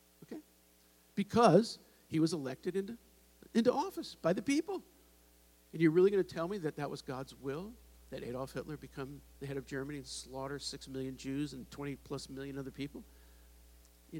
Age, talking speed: 50-69, 175 wpm